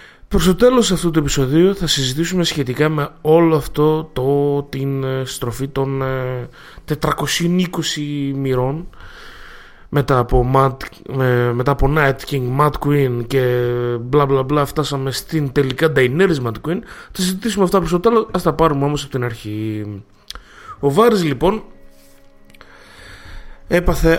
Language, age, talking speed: Greek, 20-39, 135 wpm